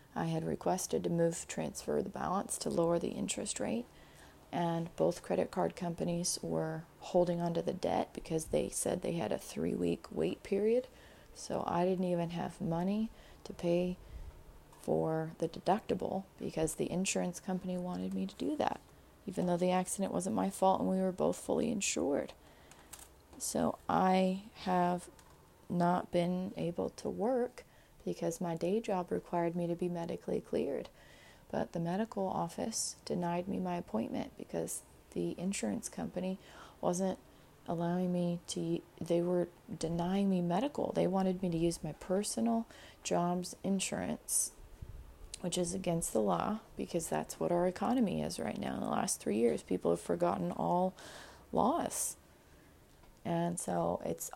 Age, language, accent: 30-49, English, American